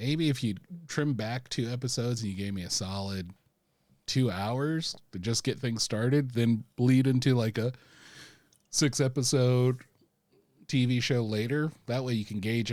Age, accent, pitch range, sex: 30-49, American, 100-135 Hz, male